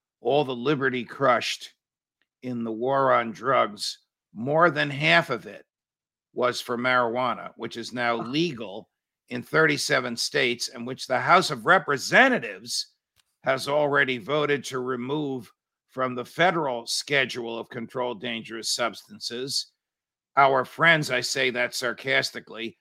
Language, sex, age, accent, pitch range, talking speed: English, male, 50-69, American, 120-145 Hz, 130 wpm